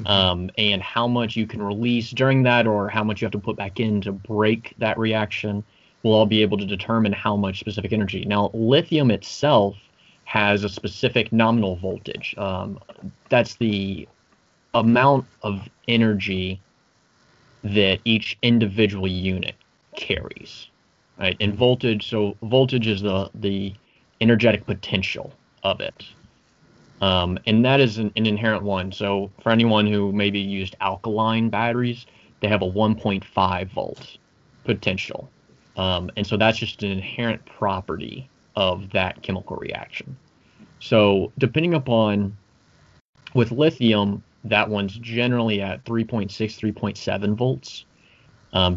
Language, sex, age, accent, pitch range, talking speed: English, male, 30-49, American, 100-115 Hz, 135 wpm